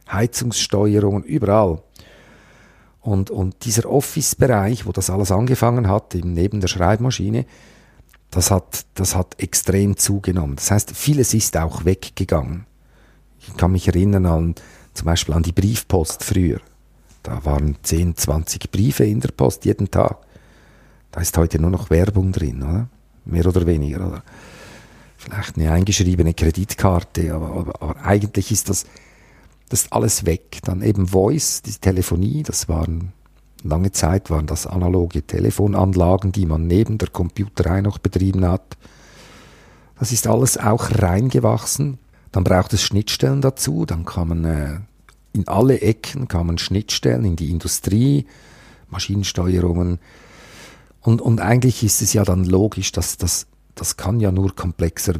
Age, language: 50-69, German